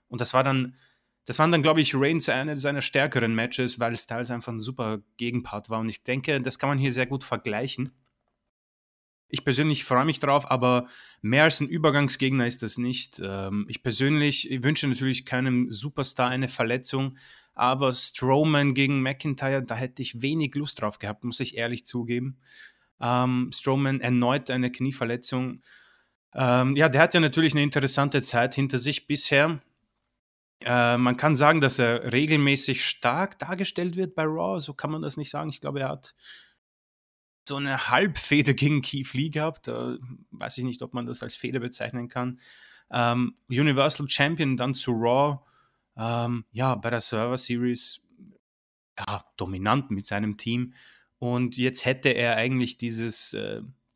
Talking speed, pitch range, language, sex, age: 165 wpm, 120-145 Hz, German, male, 20-39